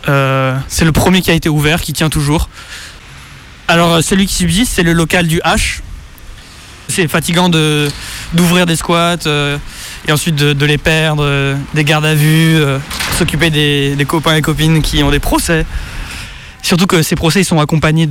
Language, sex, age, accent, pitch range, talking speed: French, male, 20-39, French, 145-170 Hz, 190 wpm